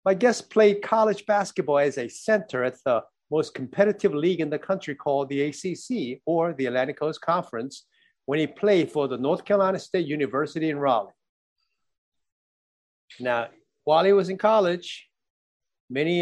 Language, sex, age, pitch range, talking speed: English, male, 50-69, 140-180 Hz, 155 wpm